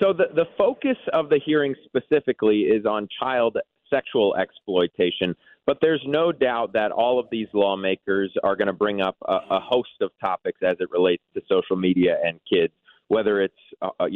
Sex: male